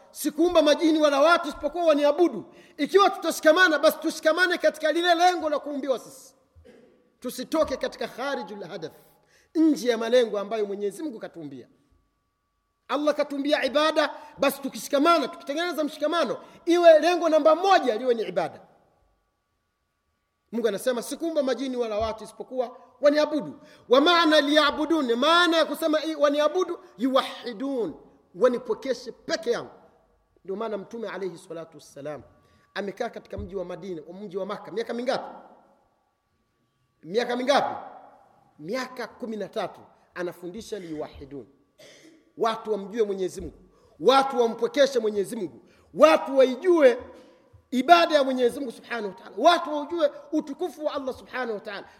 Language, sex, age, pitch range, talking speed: Swahili, male, 40-59, 230-310 Hz, 115 wpm